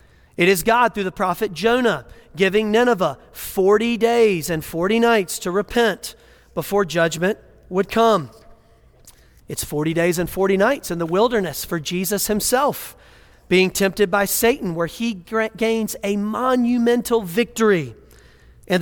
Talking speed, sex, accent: 135 wpm, male, American